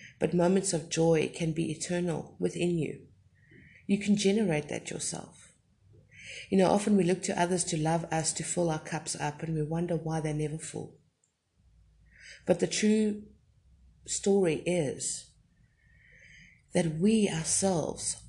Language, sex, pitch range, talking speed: English, female, 130-200 Hz, 145 wpm